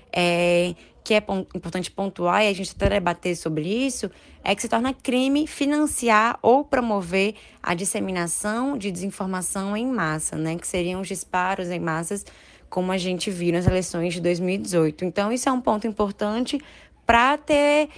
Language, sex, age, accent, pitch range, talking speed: Portuguese, female, 10-29, Brazilian, 180-230 Hz, 160 wpm